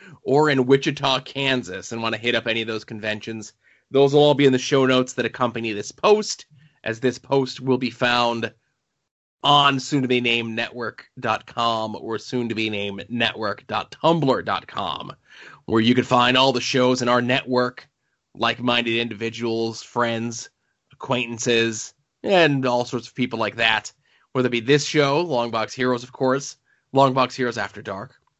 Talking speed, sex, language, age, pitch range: 150 wpm, male, English, 20-39, 110-130 Hz